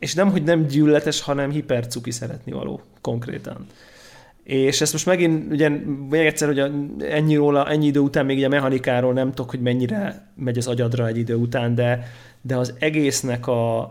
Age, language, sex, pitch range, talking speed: 30-49, Hungarian, male, 125-145 Hz, 180 wpm